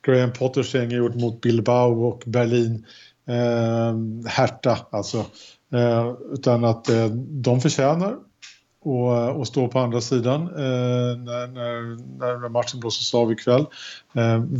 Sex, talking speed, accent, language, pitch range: male, 125 wpm, Norwegian, Swedish, 115-135 Hz